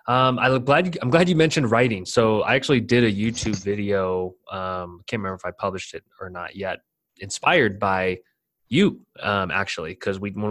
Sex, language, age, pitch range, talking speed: male, English, 20-39, 95-110 Hz, 200 wpm